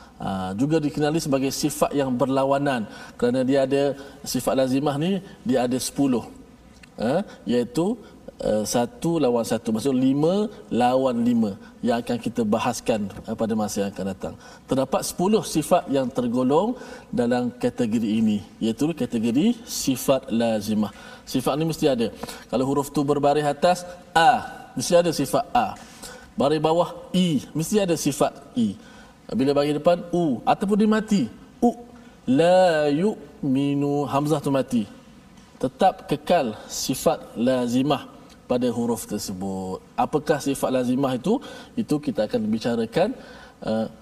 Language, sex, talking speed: Malayalam, male, 135 wpm